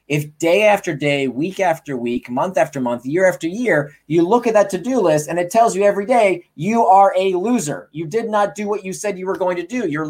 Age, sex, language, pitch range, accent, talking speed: 30-49, male, English, 150-210 Hz, American, 250 wpm